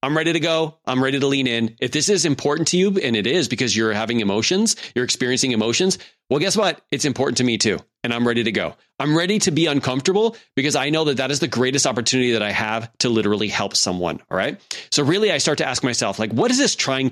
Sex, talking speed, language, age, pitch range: male, 255 wpm, English, 30-49, 115-155 Hz